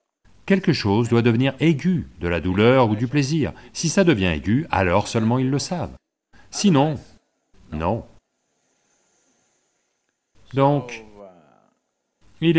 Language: English